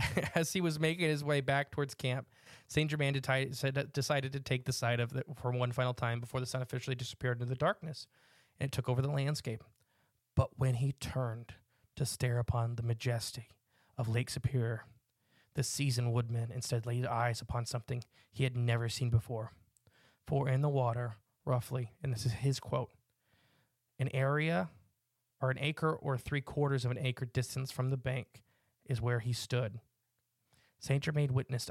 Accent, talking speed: American, 175 wpm